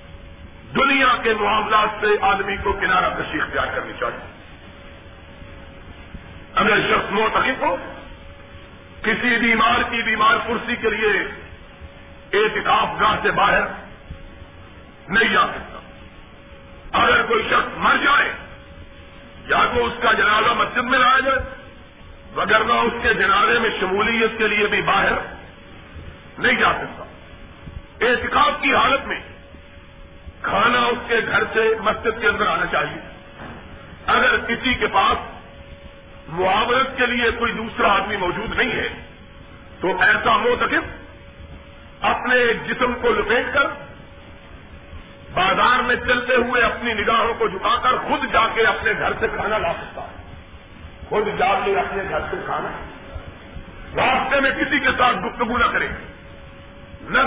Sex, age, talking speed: male, 50-69, 130 wpm